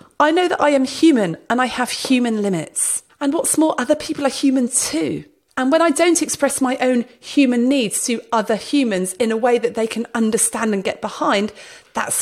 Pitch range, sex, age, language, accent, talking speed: 205-280 Hz, female, 40-59, English, British, 205 wpm